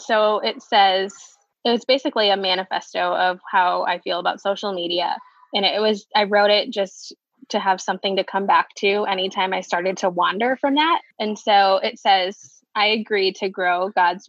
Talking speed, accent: 190 wpm, American